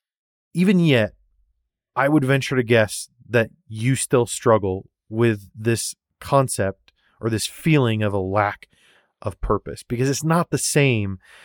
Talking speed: 140 wpm